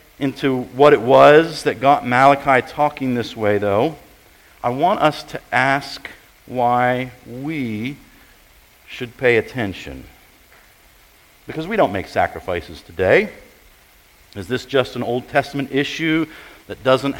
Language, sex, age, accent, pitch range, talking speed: English, male, 50-69, American, 125-155 Hz, 125 wpm